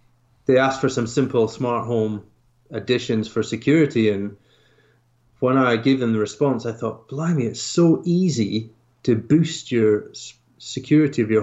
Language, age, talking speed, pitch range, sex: English, 30-49, 150 wpm, 110-130 Hz, male